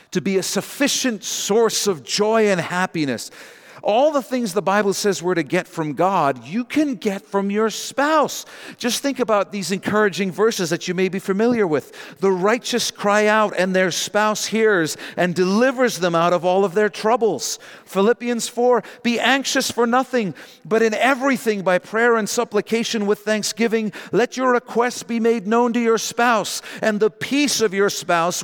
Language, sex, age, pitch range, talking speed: English, male, 50-69, 170-230 Hz, 180 wpm